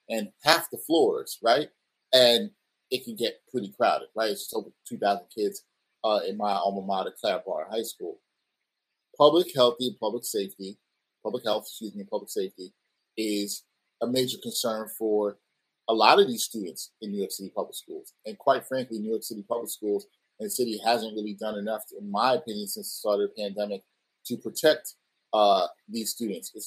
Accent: American